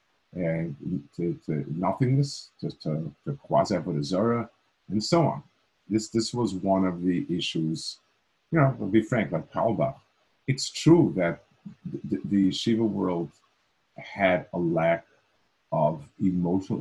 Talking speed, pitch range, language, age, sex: 135 wpm, 85-115 Hz, English, 50-69, male